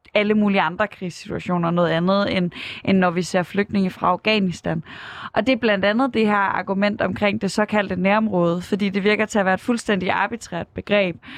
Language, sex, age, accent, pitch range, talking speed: Danish, female, 20-39, native, 185-220 Hz, 195 wpm